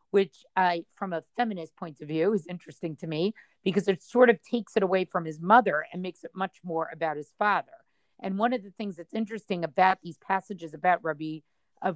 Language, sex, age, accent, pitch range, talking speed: English, female, 40-59, American, 170-215 Hz, 215 wpm